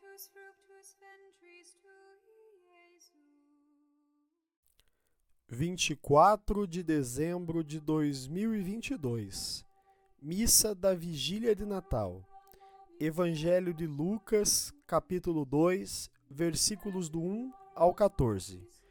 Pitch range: 170-255 Hz